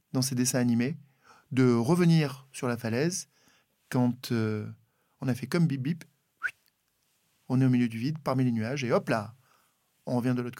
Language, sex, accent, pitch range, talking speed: French, male, French, 125-165 Hz, 180 wpm